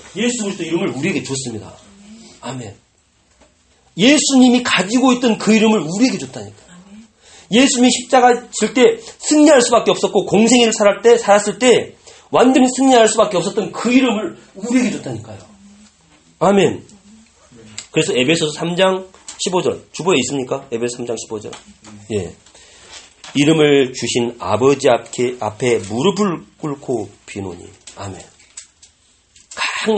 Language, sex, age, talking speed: English, male, 40-59, 100 wpm